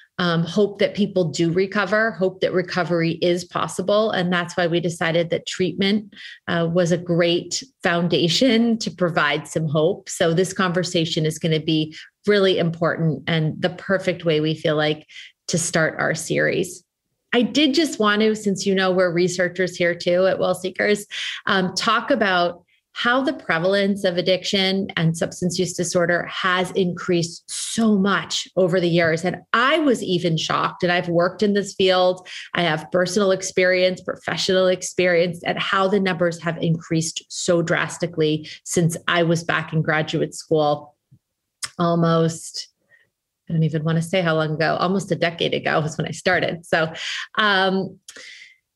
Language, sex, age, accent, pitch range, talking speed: English, female, 30-49, American, 170-190 Hz, 165 wpm